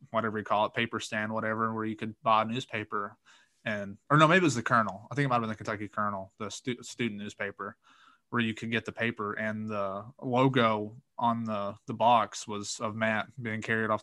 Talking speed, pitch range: 220 wpm, 110-120 Hz